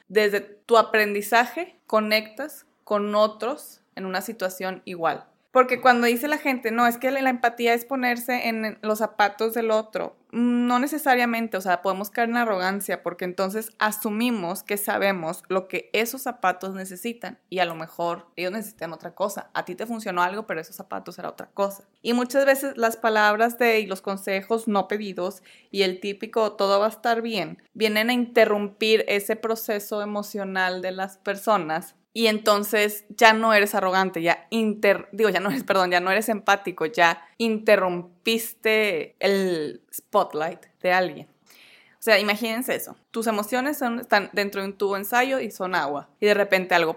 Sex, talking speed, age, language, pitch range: female, 175 wpm, 20-39, Spanish, 185-230 Hz